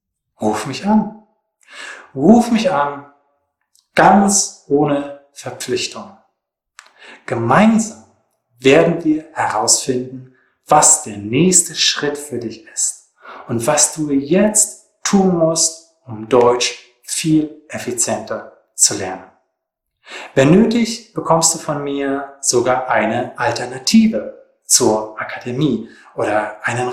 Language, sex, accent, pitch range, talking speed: English, male, German, 120-185 Hz, 100 wpm